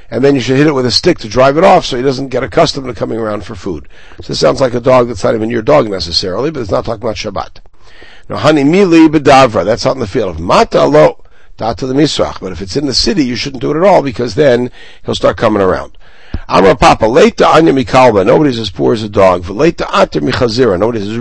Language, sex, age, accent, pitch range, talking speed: English, male, 60-79, American, 105-135 Hz, 215 wpm